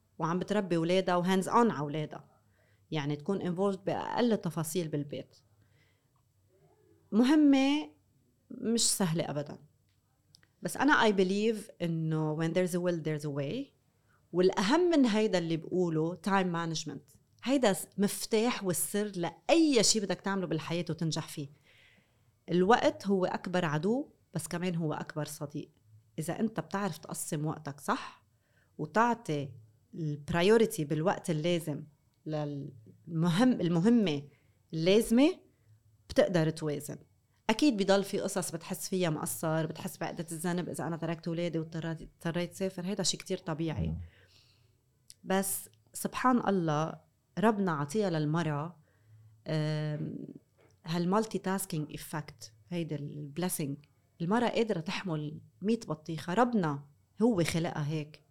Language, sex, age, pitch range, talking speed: Arabic, female, 30-49, 145-195 Hz, 115 wpm